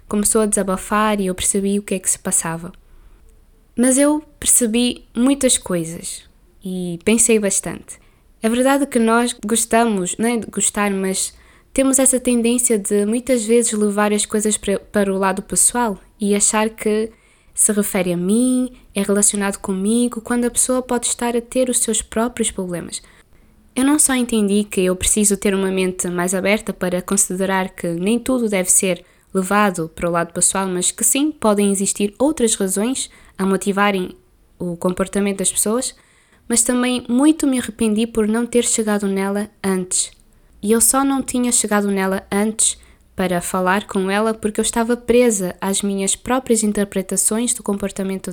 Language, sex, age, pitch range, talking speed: Portuguese, female, 20-39, 195-235 Hz, 165 wpm